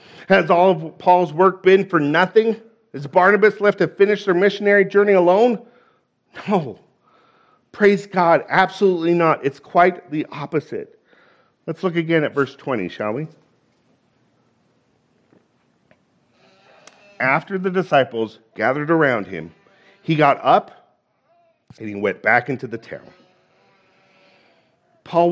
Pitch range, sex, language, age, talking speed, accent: 145-205 Hz, male, English, 50-69, 120 wpm, American